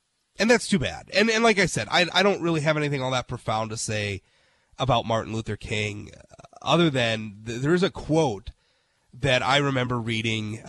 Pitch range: 110-145 Hz